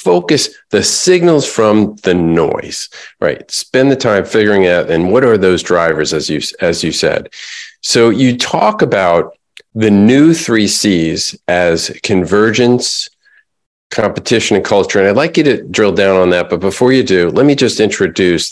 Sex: male